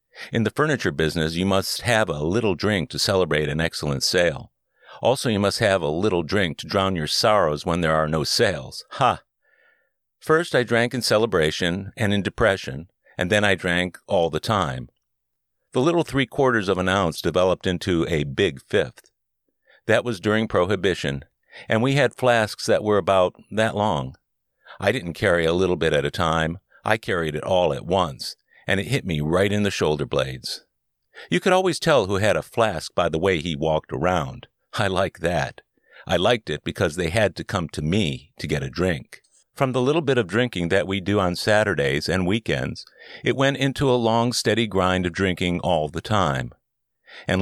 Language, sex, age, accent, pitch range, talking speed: English, male, 50-69, American, 80-115 Hz, 190 wpm